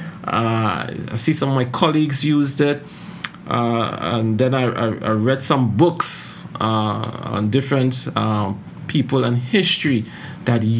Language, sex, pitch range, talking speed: English, male, 130-175 Hz, 150 wpm